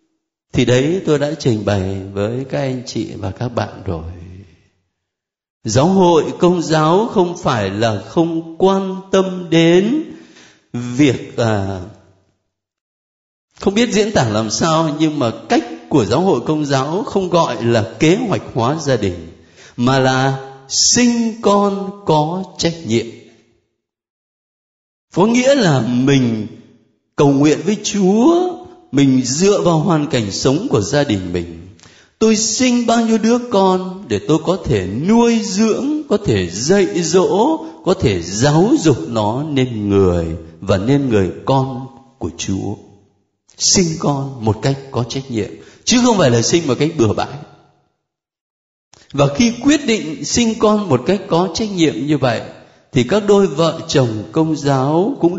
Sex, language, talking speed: male, Vietnamese, 150 wpm